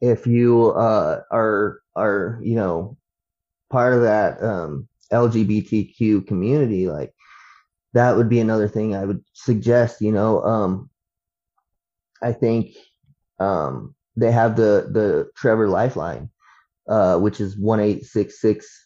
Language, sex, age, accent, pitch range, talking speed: English, male, 20-39, American, 100-115 Hz, 120 wpm